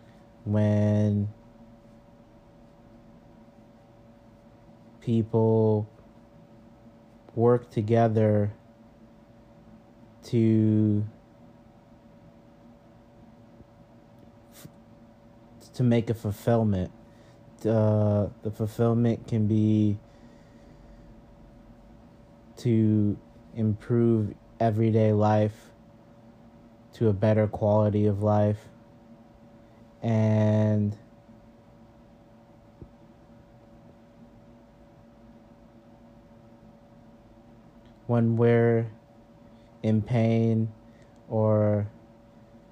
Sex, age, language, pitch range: male, 30-49, English, 110-115 Hz